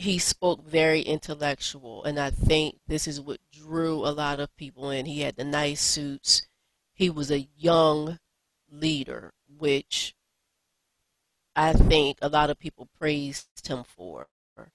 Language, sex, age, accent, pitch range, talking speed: English, female, 30-49, American, 145-165 Hz, 145 wpm